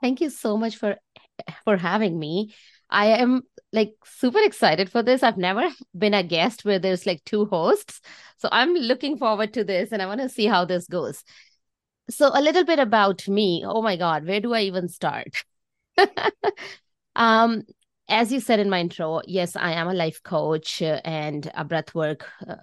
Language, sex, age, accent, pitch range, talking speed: English, female, 20-39, Indian, 170-220 Hz, 185 wpm